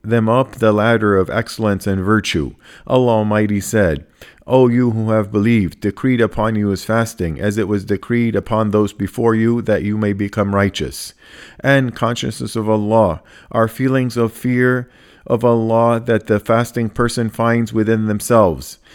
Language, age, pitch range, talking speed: English, 50-69, 105-120 Hz, 160 wpm